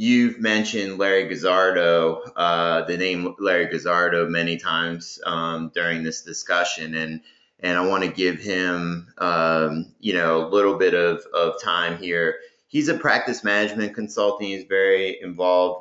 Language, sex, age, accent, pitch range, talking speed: English, male, 30-49, American, 80-95 Hz, 150 wpm